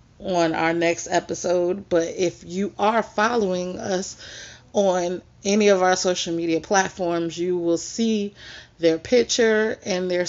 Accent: American